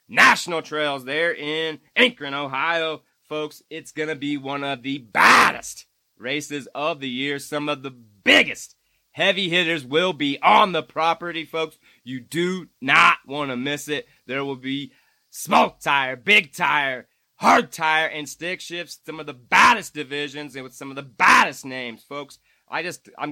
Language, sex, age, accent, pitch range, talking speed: English, male, 30-49, American, 135-155 Hz, 170 wpm